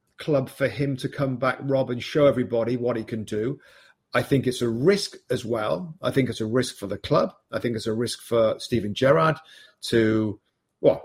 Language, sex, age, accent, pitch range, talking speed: English, male, 40-59, British, 115-140 Hz, 210 wpm